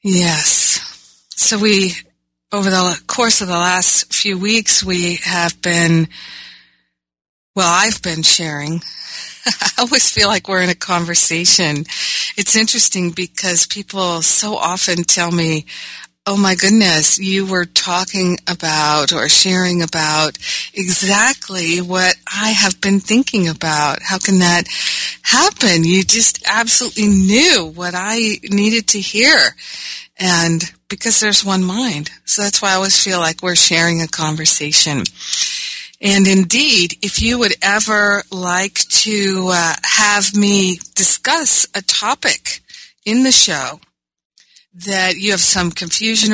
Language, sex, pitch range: English, female, 170-205 Hz